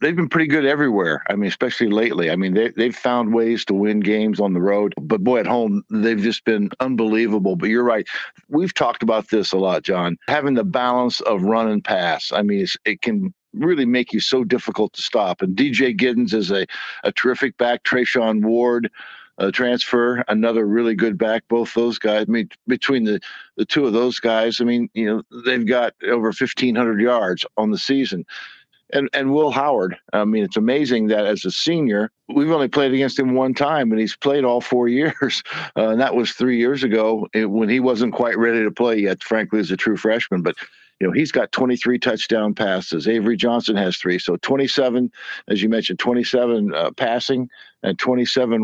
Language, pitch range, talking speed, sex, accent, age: English, 110-125 Hz, 205 wpm, male, American, 60-79